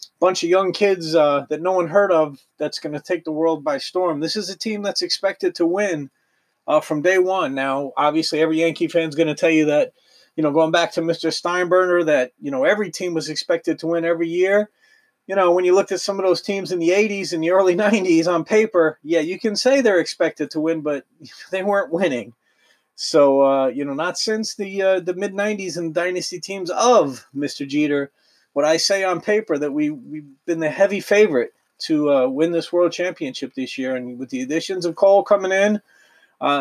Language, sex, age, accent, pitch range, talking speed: English, male, 30-49, American, 160-205 Hz, 220 wpm